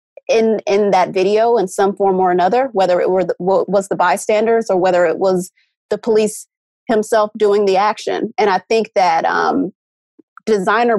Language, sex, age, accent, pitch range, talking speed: English, female, 30-49, American, 190-225 Hz, 170 wpm